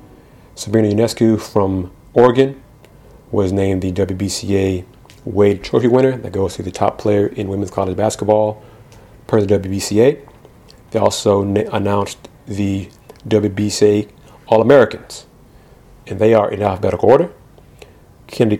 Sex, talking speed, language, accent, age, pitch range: male, 125 wpm, English, American, 40-59, 100-115 Hz